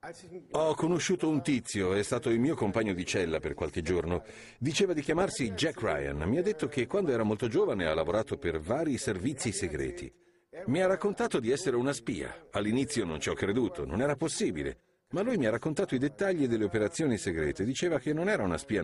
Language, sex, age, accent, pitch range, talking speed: Italian, male, 50-69, native, 110-170 Hz, 205 wpm